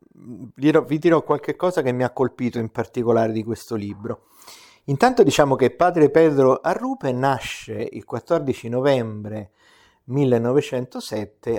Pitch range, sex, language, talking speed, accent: 110-135 Hz, male, Italian, 125 wpm, native